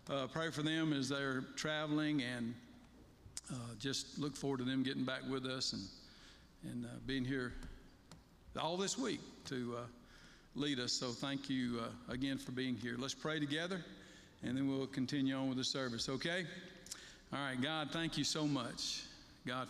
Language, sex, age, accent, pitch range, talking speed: English, male, 50-69, American, 125-150 Hz, 175 wpm